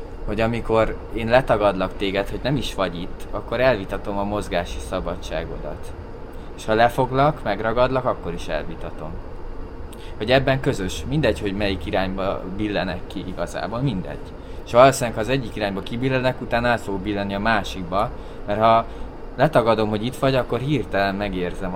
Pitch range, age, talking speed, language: 95-115 Hz, 20-39, 145 wpm, Hungarian